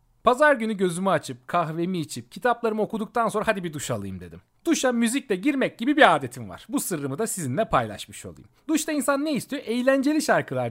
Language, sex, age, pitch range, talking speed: Turkish, male, 40-59, 160-245 Hz, 185 wpm